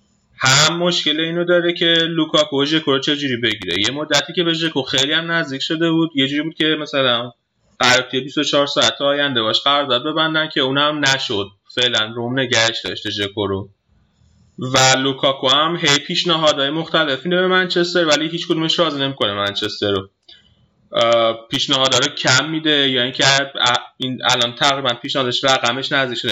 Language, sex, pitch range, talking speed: Persian, male, 120-155 Hz, 160 wpm